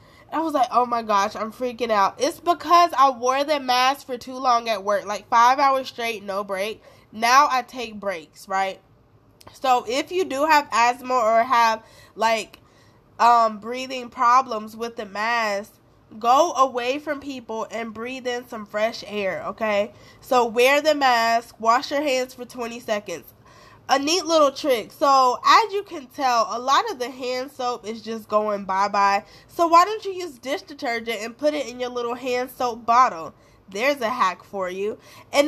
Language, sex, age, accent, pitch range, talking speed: English, female, 20-39, American, 220-280 Hz, 185 wpm